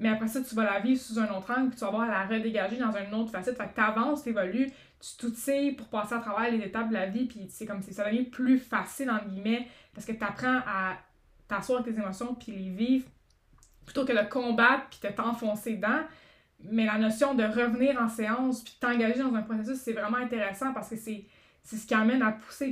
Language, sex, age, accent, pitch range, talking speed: French, female, 20-39, Canadian, 210-250 Hz, 255 wpm